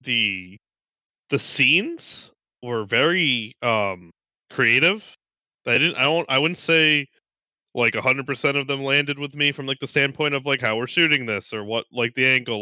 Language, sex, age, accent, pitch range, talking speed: English, male, 20-39, American, 110-135 Hz, 180 wpm